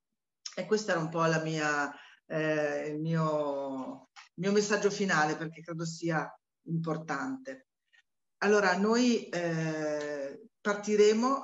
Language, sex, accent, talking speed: Italian, female, native, 100 wpm